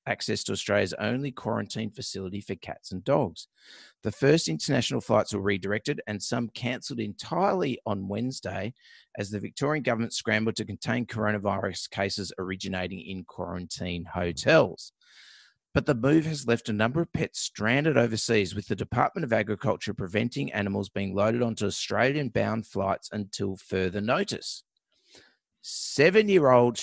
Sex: male